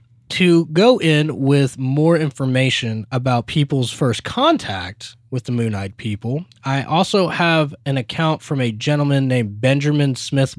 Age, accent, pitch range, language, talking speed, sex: 20-39, American, 115-160 Hz, English, 140 wpm, male